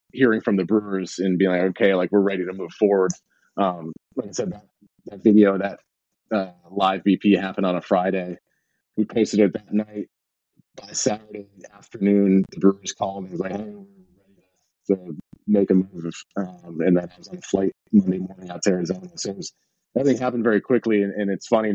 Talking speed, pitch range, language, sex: 210 wpm, 90-105 Hz, English, male